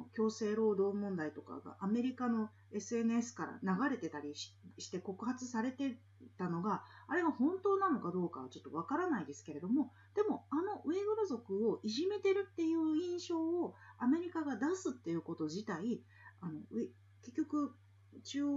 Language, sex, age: Japanese, female, 40-59